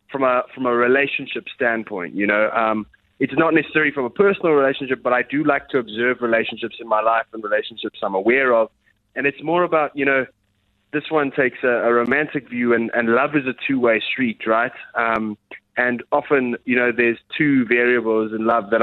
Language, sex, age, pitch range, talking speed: English, male, 20-39, 115-140 Hz, 200 wpm